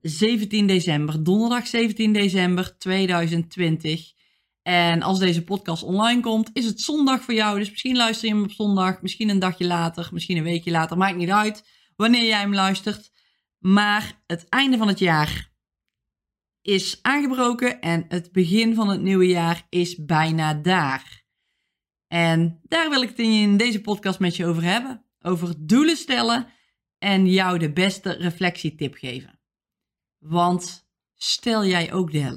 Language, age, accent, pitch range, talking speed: Dutch, 20-39, Dutch, 175-220 Hz, 155 wpm